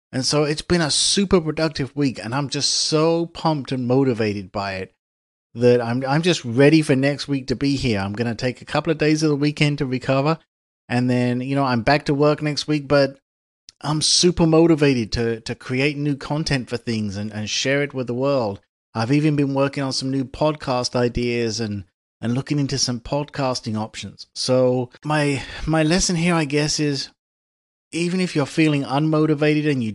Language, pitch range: English, 120-155 Hz